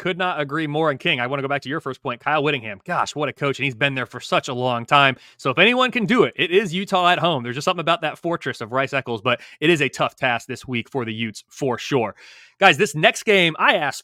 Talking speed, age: 290 wpm, 30-49